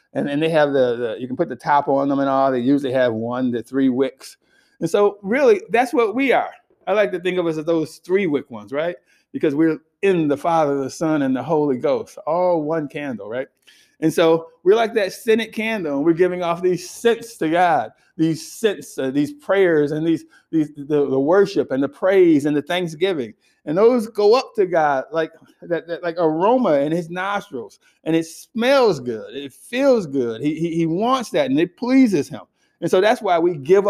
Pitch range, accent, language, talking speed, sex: 155-215 Hz, American, English, 220 wpm, male